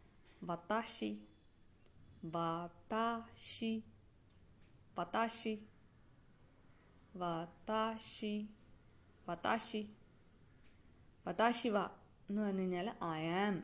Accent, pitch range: native, 180-225 Hz